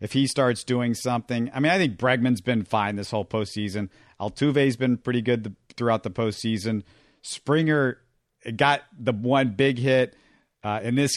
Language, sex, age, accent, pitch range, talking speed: English, male, 50-69, American, 115-140 Hz, 175 wpm